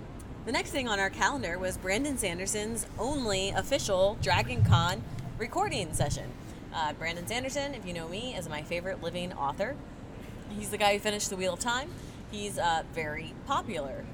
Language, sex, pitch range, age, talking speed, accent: English, female, 170-215 Hz, 30-49, 170 wpm, American